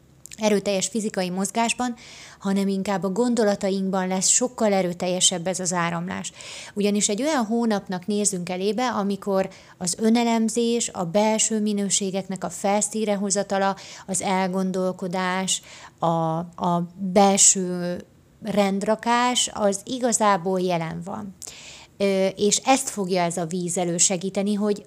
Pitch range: 180-215 Hz